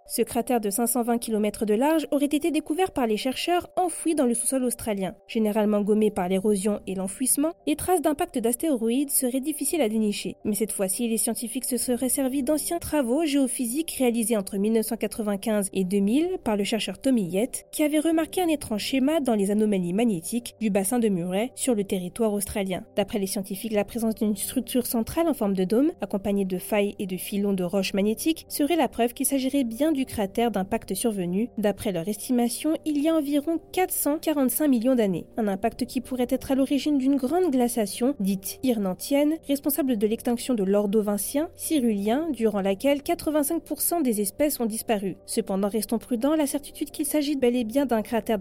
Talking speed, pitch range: 185 wpm, 205-275 Hz